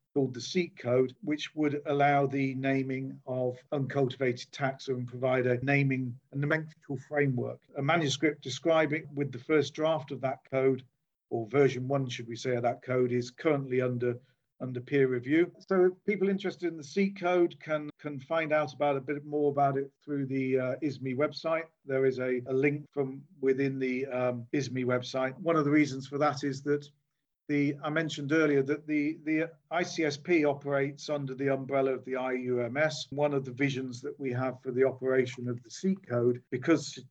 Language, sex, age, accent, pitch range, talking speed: English, male, 40-59, British, 130-150 Hz, 185 wpm